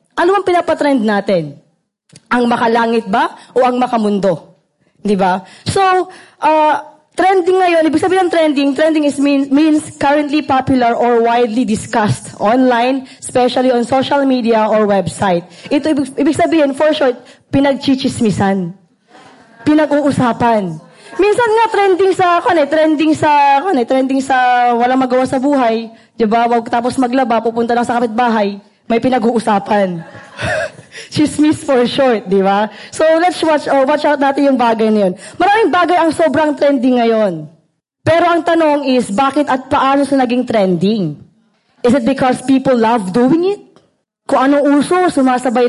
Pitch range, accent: 230-300 Hz, Filipino